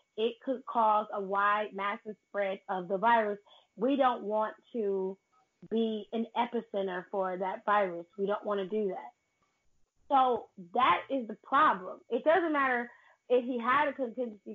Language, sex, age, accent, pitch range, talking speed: English, female, 20-39, American, 200-245 Hz, 160 wpm